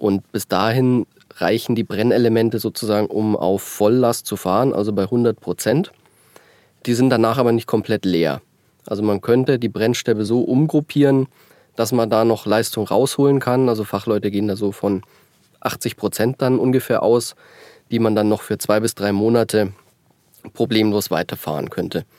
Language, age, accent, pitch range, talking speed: German, 20-39, German, 105-120 Hz, 155 wpm